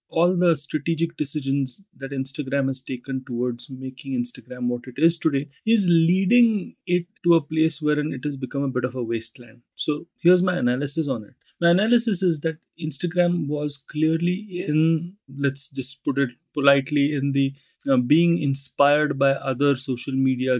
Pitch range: 130-165 Hz